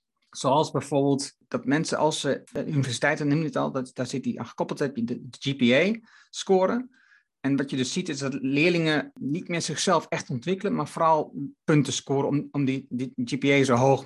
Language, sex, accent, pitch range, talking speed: Dutch, male, Dutch, 130-175 Hz, 190 wpm